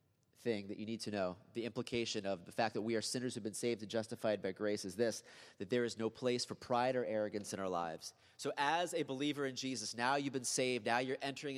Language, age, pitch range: English, 30-49, 100-125 Hz